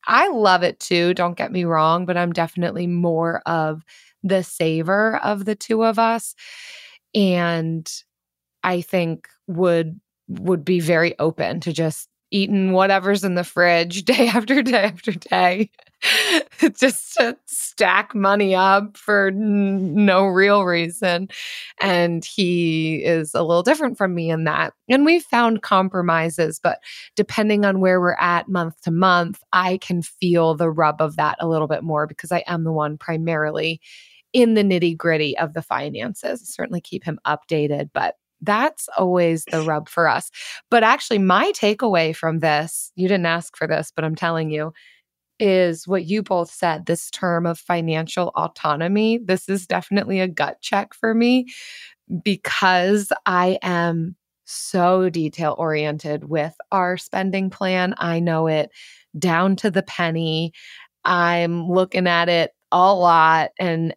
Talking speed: 155 wpm